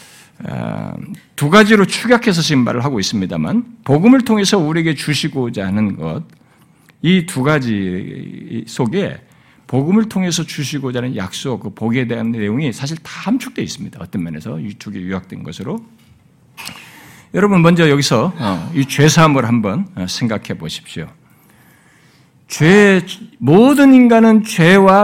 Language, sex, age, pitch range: Korean, male, 60-79, 140-225 Hz